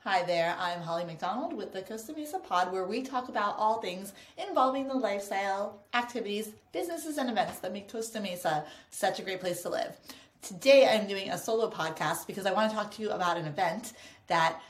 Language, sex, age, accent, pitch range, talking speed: English, female, 30-49, American, 175-245 Hz, 205 wpm